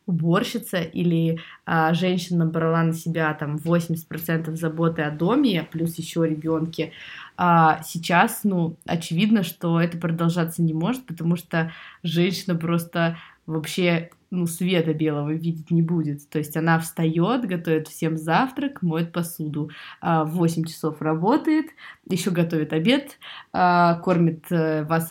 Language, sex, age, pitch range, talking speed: Russian, female, 20-39, 165-205 Hz, 135 wpm